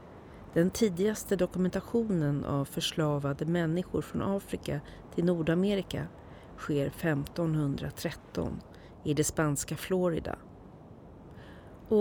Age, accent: 40-59, native